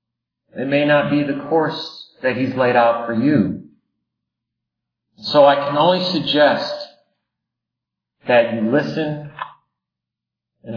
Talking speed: 115 wpm